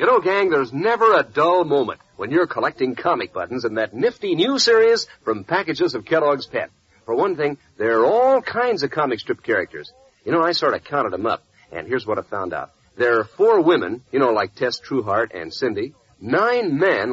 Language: English